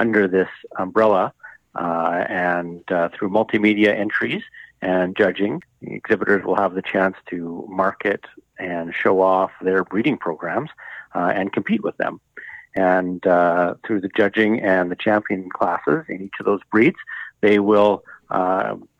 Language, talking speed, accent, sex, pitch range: English, 150 wpm, American, male, 95-110 Hz